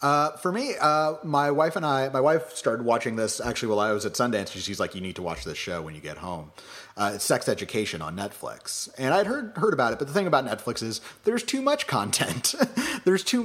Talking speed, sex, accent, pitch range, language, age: 245 wpm, male, American, 100-130 Hz, English, 30-49